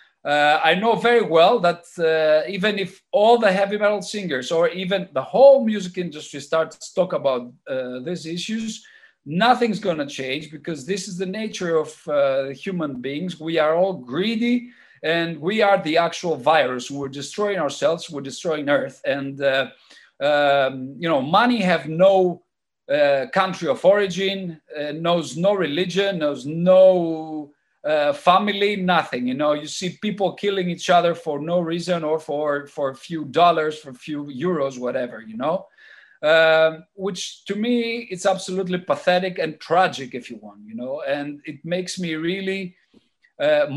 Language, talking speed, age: English, 165 wpm, 50-69